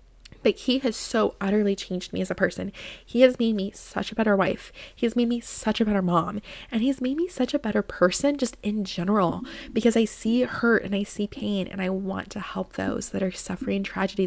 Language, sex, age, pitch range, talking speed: English, female, 20-39, 185-230 Hz, 230 wpm